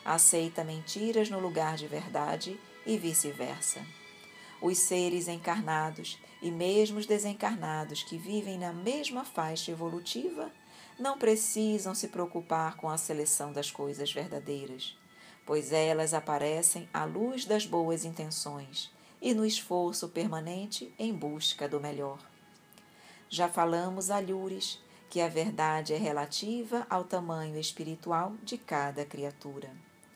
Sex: female